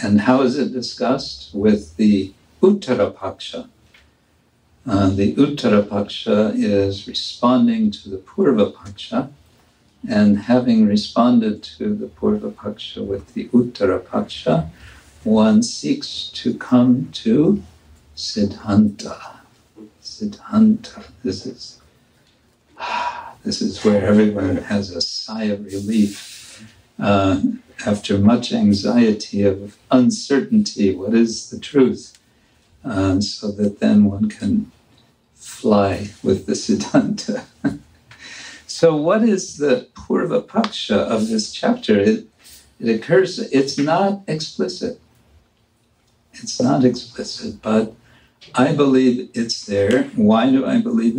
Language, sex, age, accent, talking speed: English, male, 60-79, American, 105 wpm